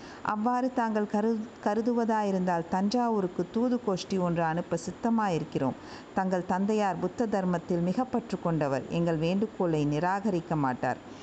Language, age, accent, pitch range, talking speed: Tamil, 50-69, native, 170-210 Hz, 105 wpm